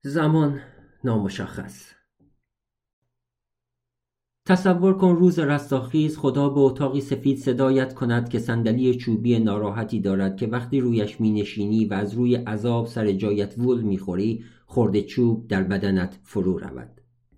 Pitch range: 100-125 Hz